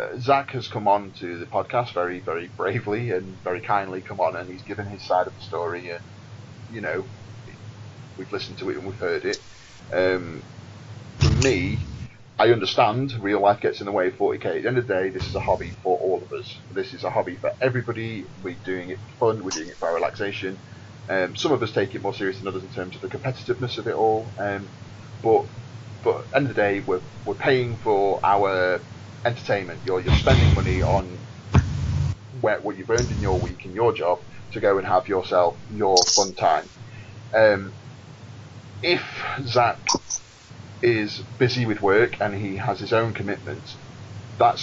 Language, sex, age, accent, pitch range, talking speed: English, male, 30-49, British, 100-120 Hz, 195 wpm